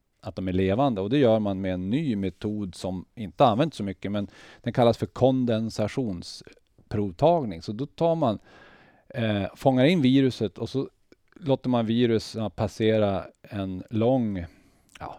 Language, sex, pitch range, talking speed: Swedish, male, 95-125 Hz, 155 wpm